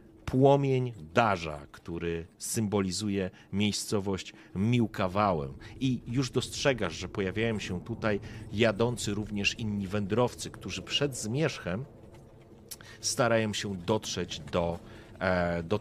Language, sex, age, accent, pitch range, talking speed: Polish, male, 40-59, native, 95-115 Hz, 95 wpm